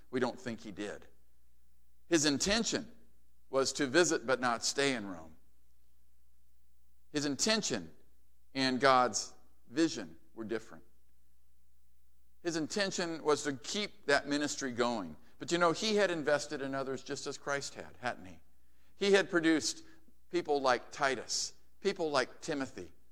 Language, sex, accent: English, male, American